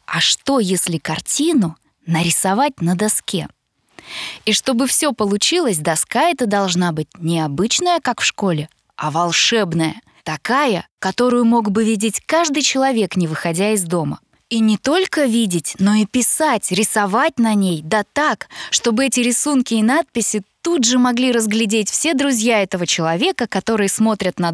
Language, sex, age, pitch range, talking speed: Russian, female, 20-39, 180-260 Hz, 150 wpm